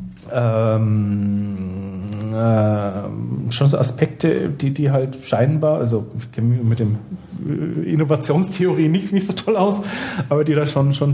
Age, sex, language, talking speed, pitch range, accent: 40-59, male, German, 140 wpm, 115-145 Hz, German